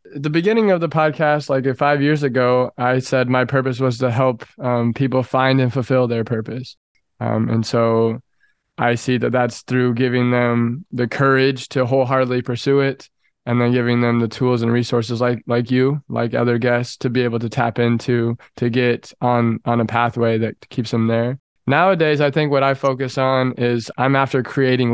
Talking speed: 190 wpm